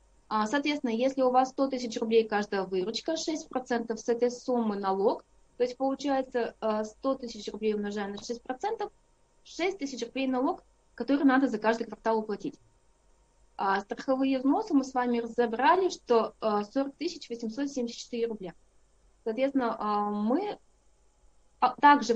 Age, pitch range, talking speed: 20-39, 220-270 Hz, 125 wpm